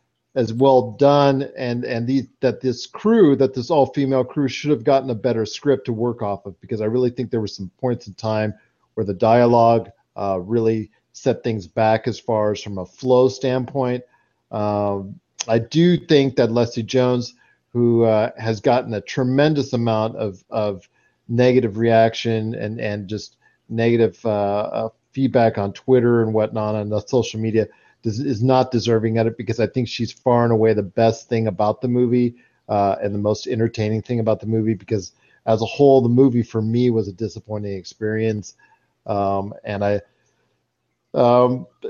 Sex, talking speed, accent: male, 175 wpm, American